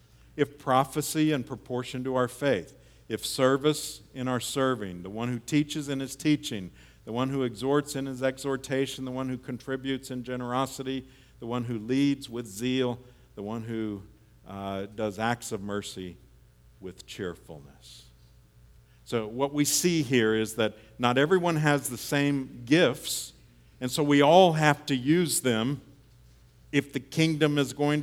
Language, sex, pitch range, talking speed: English, male, 95-130 Hz, 160 wpm